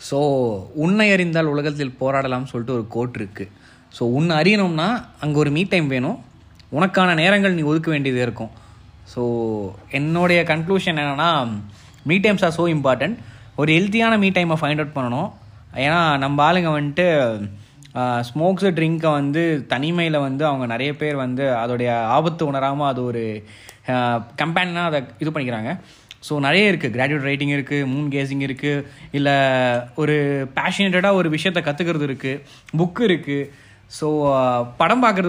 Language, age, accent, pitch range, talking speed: Tamil, 20-39, native, 130-175 Hz, 140 wpm